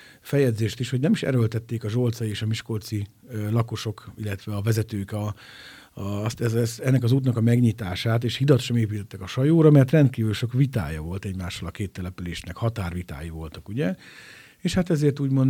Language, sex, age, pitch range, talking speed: Hungarian, male, 50-69, 100-130 Hz, 180 wpm